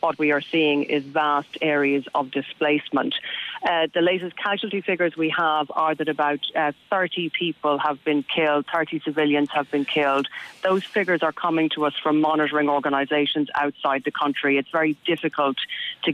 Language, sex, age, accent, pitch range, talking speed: English, female, 30-49, Irish, 140-155 Hz, 170 wpm